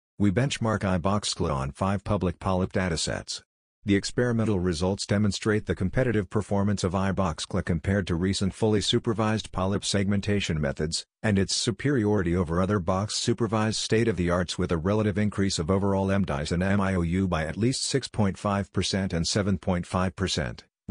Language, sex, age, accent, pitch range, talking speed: English, male, 50-69, American, 90-105 Hz, 135 wpm